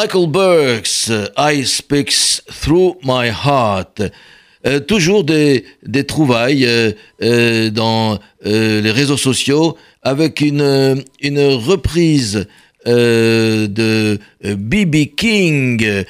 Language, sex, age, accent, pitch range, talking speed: French, male, 60-79, French, 115-150 Hz, 105 wpm